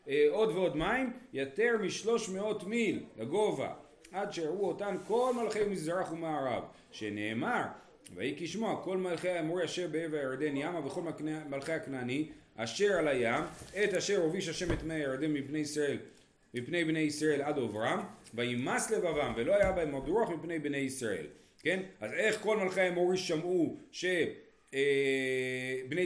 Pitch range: 130-180 Hz